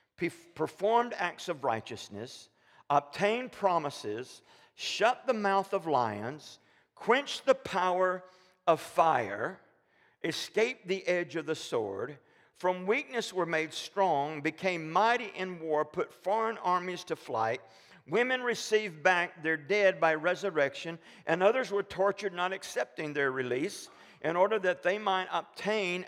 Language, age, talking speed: English, 50-69, 130 wpm